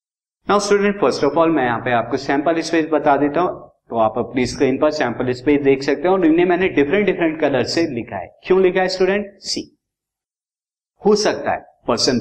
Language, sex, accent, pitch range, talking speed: Hindi, male, native, 125-175 Hz, 205 wpm